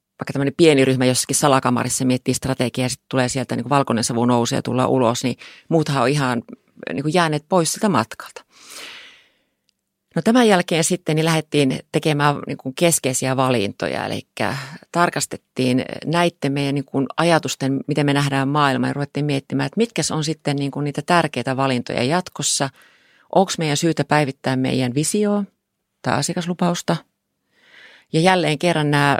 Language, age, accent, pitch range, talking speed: Finnish, 30-49, native, 130-160 Hz, 150 wpm